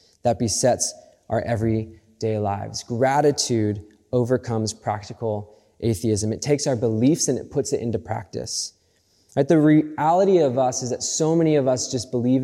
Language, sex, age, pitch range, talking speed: English, male, 20-39, 115-135 Hz, 150 wpm